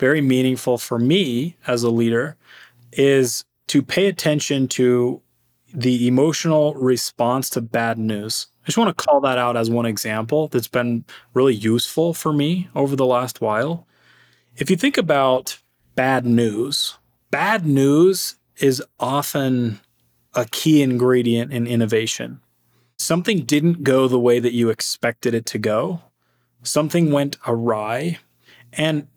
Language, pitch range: English, 120-145 Hz